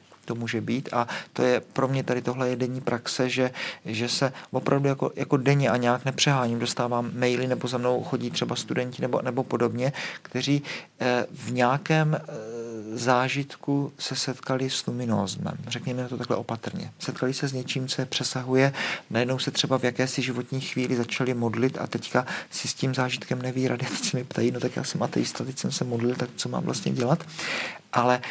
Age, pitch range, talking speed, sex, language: 40-59, 120-130 Hz, 180 wpm, male, Slovak